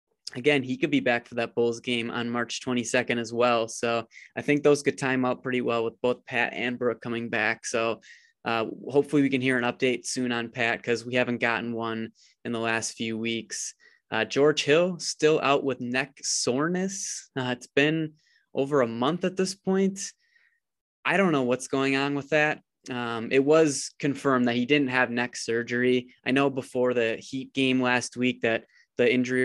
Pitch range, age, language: 120-135 Hz, 20-39, English